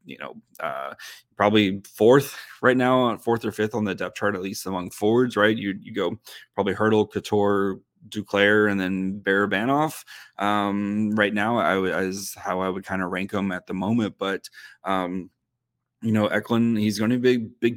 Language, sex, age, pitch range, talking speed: English, male, 20-39, 95-115 Hz, 195 wpm